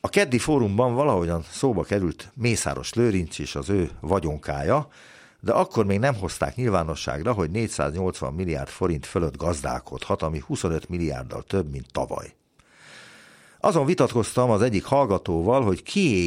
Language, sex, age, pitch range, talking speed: Hungarian, male, 50-69, 80-125 Hz, 135 wpm